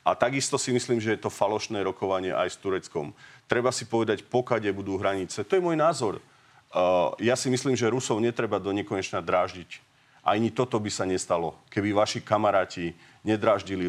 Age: 40-59